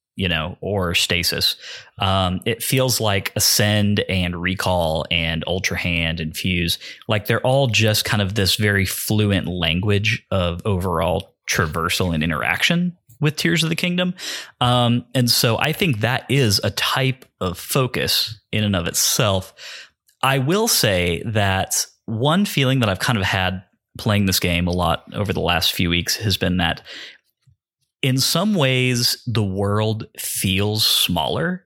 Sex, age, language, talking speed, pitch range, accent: male, 30-49, English, 155 wpm, 90-130 Hz, American